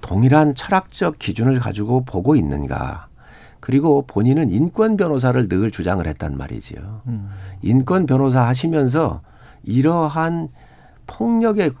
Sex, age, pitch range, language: male, 50-69, 105-150 Hz, Korean